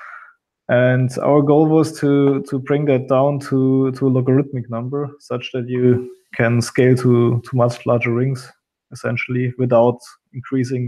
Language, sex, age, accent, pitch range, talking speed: English, male, 20-39, German, 120-140 Hz, 150 wpm